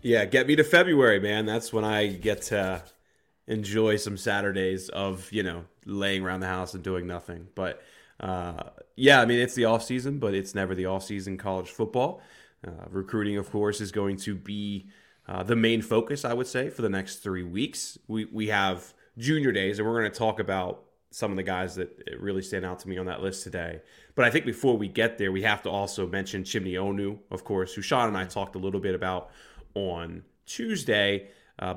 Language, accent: English, American